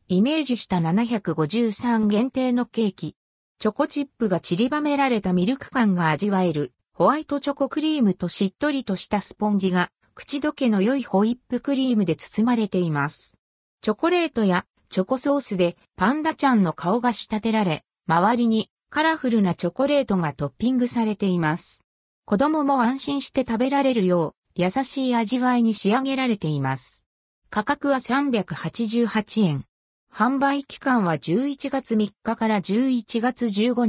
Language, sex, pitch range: Japanese, female, 180-260 Hz